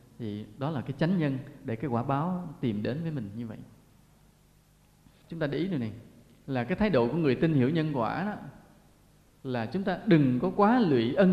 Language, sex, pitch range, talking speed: Vietnamese, male, 120-175 Hz, 215 wpm